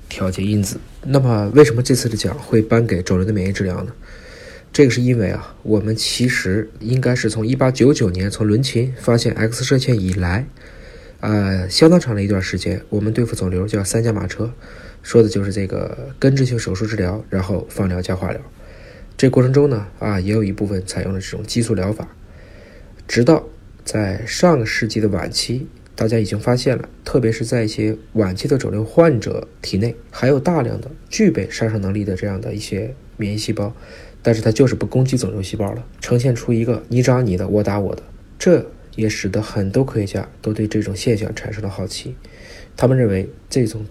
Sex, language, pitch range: male, Chinese, 100-120 Hz